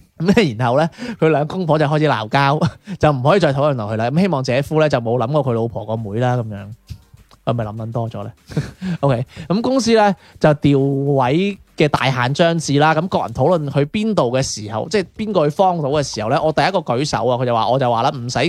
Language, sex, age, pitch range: Chinese, male, 20-39, 130-170 Hz